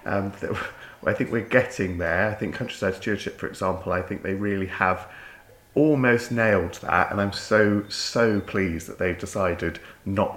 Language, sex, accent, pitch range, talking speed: English, male, British, 85-100 Hz, 170 wpm